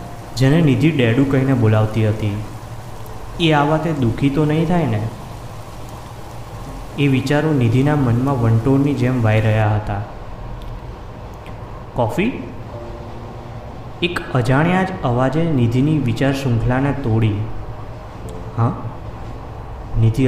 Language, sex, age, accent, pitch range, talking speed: Gujarati, male, 20-39, native, 110-125 Hz, 100 wpm